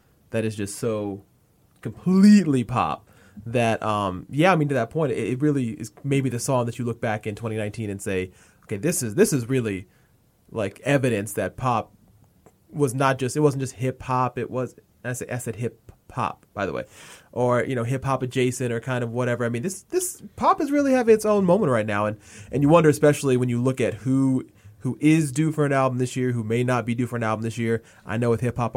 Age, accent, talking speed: 20-39, American, 235 wpm